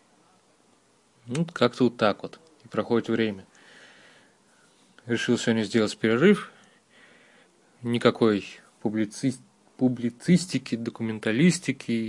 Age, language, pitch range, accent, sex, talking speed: 20-39, Russian, 110-150 Hz, native, male, 80 wpm